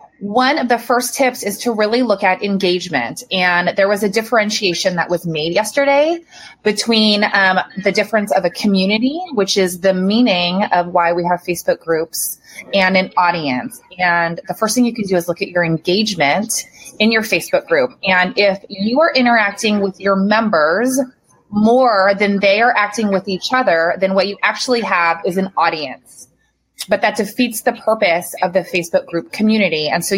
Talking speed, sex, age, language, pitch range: 185 wpm, female, 20-39, English, 180-225 Hz